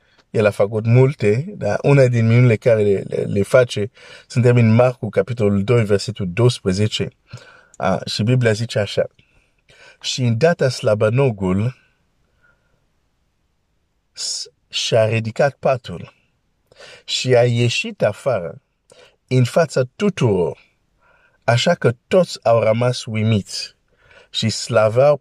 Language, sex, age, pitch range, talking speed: Romanian, male, 50-69, 105-140 Hz, 115 wpm